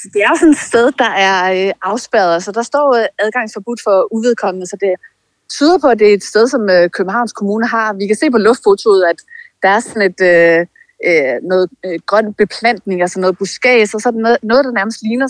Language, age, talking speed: Danish, 30-49, 195 wpm